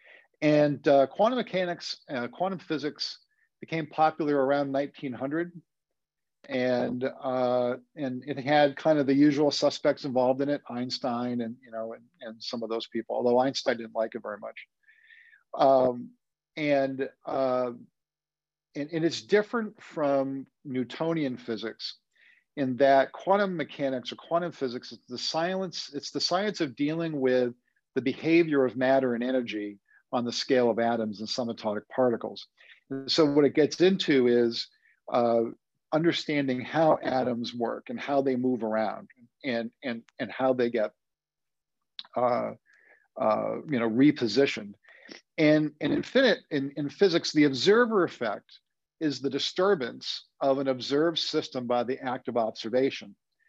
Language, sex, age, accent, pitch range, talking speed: English, male, 50-69, American, 125-155 Hz, 145 wpm